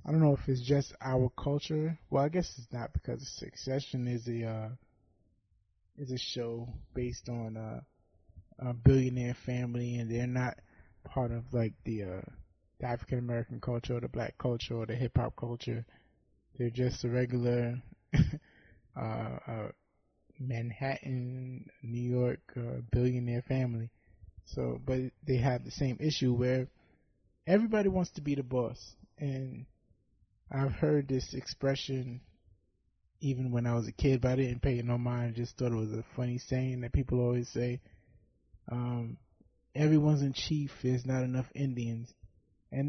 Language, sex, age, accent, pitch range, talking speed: English, male, 20-39, American, 115-130 Hz, 160 wpm